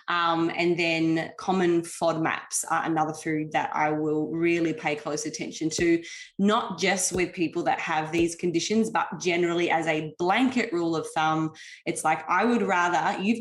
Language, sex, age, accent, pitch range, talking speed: English, female, 20-39, Australian, 160-195 Hz, 175 wpm